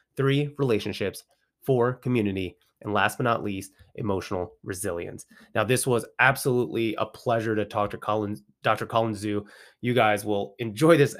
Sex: male